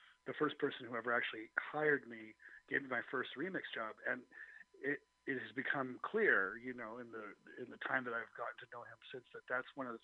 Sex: male